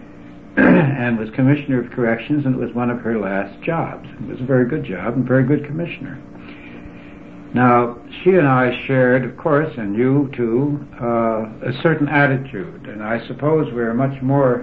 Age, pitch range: 70-89, 115-140 Hz